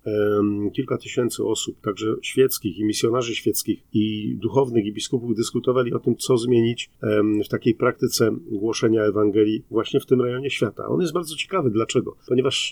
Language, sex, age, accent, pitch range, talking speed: Polish, male, 40-59, native, 110-125 Hz, 155 wpm